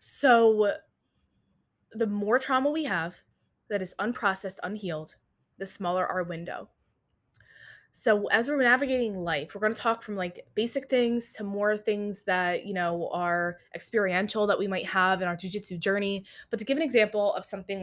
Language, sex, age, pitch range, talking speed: English, female, 20-39, 185-255 Hz, 170 wpm